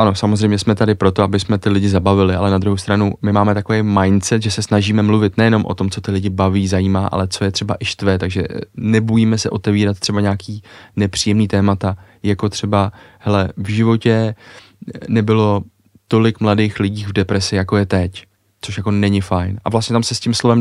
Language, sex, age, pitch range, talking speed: Czech, male, 20-39, 100-110 Hz, 200 wpm